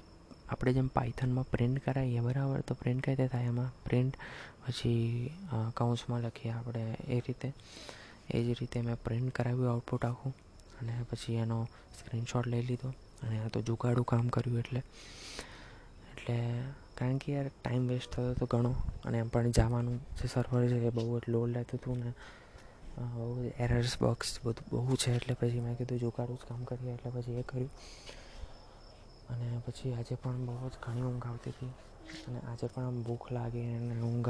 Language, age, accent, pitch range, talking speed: Gujarati, 20-39, native, 120-130 Hz, 105 wpm